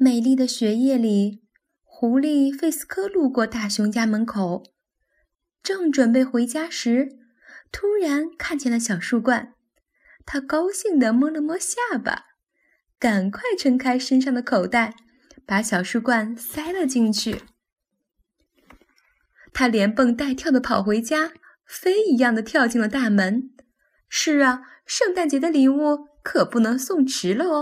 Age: 10-29